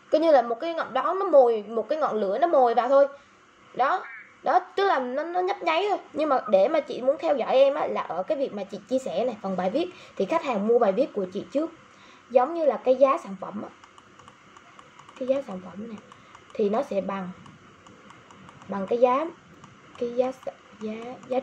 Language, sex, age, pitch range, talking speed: Vietnamese, female, 20-39, 195-275 Hz, 225 wpm